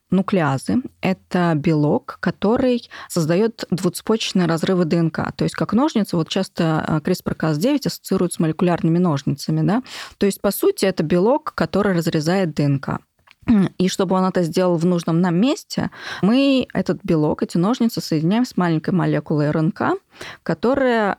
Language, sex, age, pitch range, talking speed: Russian, female, 20-39, 160-205 Hz, 140 wpm